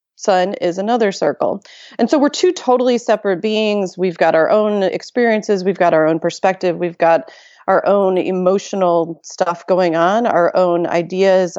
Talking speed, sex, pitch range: 165 wpm, female, 170-205 Hz